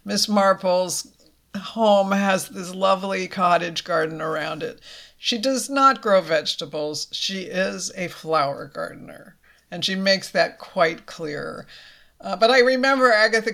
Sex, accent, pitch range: female, American, 180-235 Hz